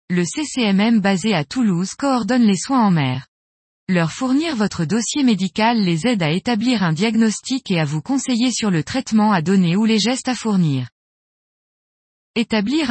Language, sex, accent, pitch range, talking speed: French, female, French, 185-245 Hz, 165 wpm